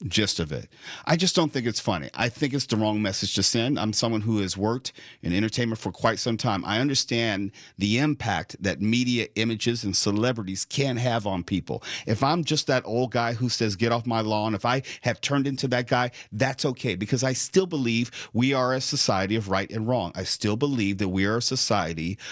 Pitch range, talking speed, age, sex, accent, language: 105-135 Hz, 220 wpm, 50-69, male, American, English